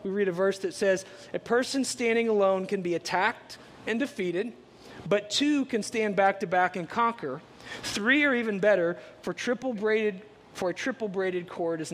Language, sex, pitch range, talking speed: English, male, 170-220 Hz, 170 wpm